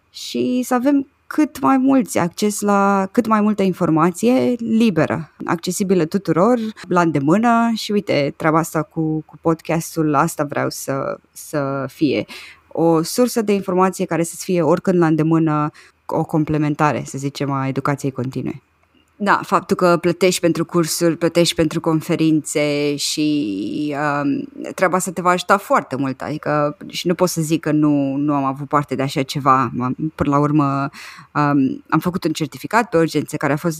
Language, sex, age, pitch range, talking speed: Romanian, female, 20-39, 150-195 Hz, 165 wpm